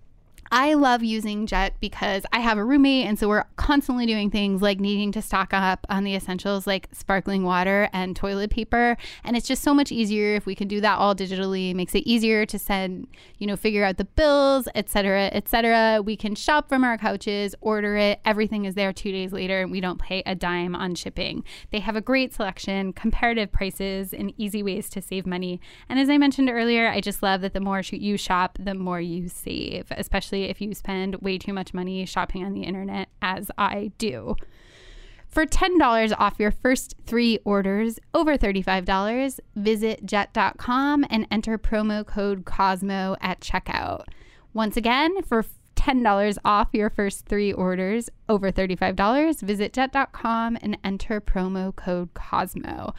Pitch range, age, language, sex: 195-225 Hz, 10-29, English, female